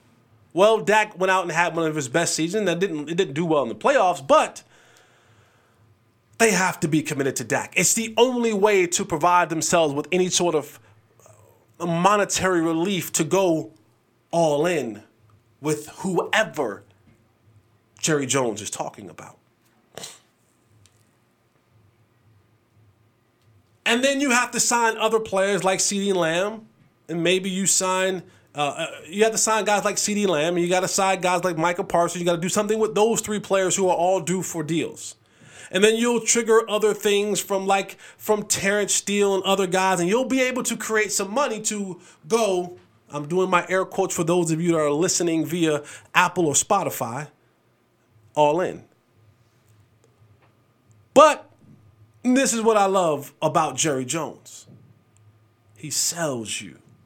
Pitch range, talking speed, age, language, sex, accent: 120-195 Hz, 160 wpm, 30-49, English, male, American